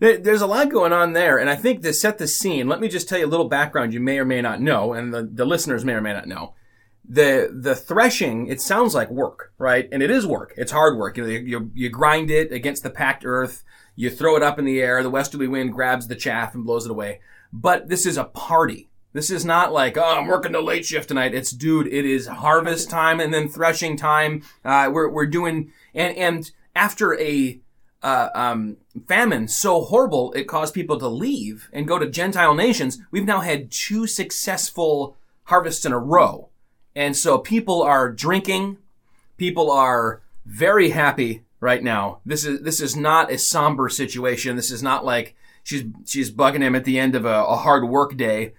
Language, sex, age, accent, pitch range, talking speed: English, male, 30-49, American, 125-165 Hz, 215 wpm